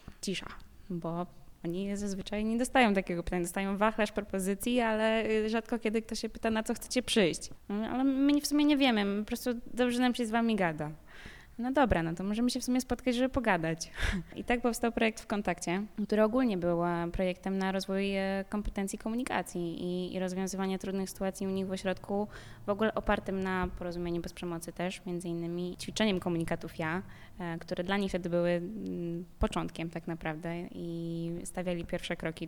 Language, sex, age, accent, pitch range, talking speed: Polish, female, 20-39, native, 175-215 Hz, 170 wpm